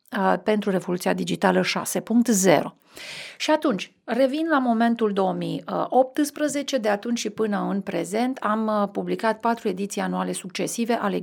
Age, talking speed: 40-59, 125 wpm